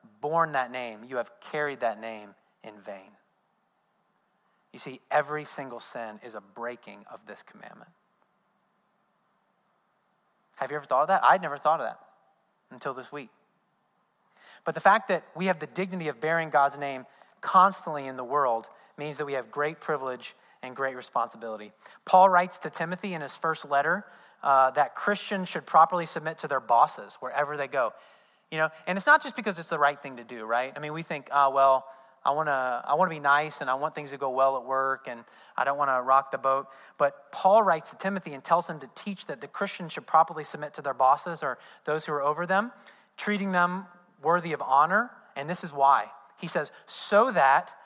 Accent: American